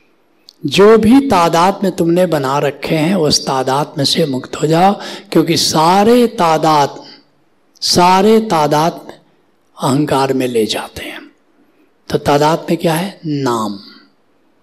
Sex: male